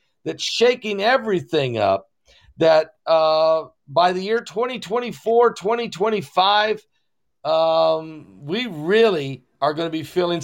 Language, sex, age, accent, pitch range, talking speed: English, male, 50-69, American, 155-205 Hz, 110 wpm